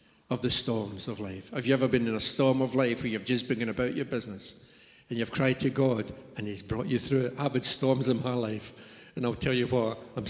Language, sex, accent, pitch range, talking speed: English, male, British, 120-145 Hz, 255 wpm